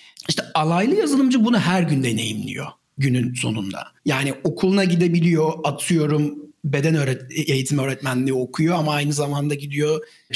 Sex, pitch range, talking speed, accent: male, 150-185 Hz, 125 wpm, native